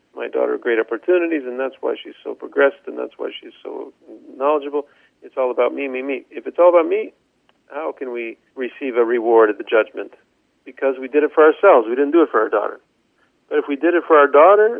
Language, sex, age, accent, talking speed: English, male, 50-69, American, 230 wpm